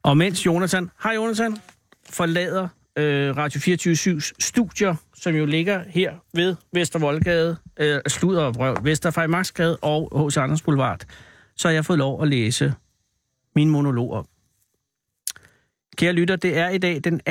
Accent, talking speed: native, 150 wpm